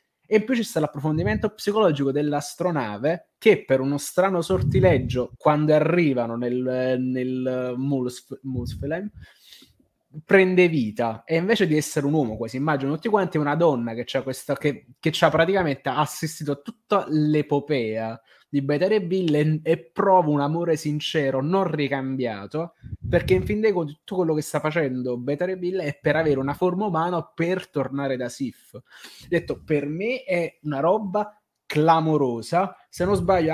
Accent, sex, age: native, male, 20-39